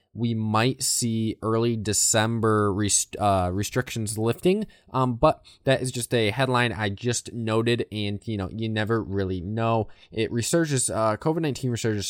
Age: 20-39